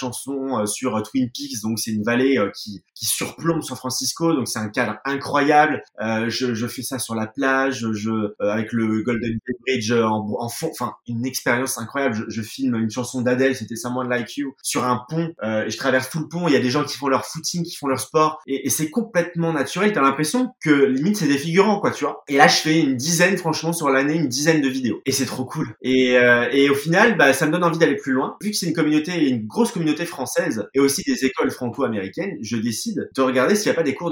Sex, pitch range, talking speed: male, 120-155 Hz, 250 wpm